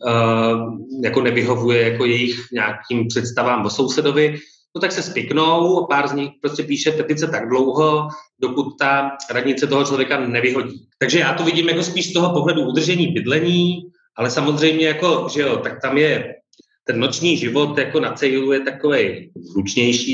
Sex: male